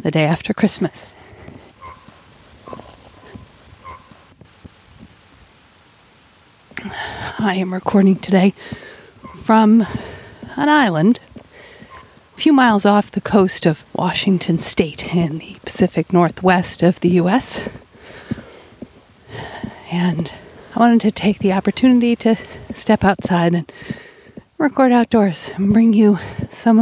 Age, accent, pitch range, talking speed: 40-59, American, 170-225 Hz, 100 wpm